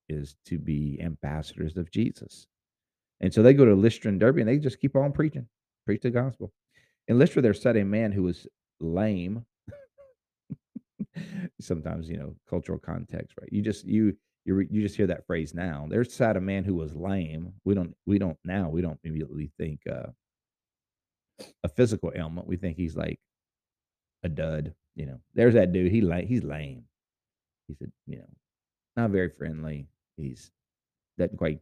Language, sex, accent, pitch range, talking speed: English, male, American, 80-115 Hz, 180 wpm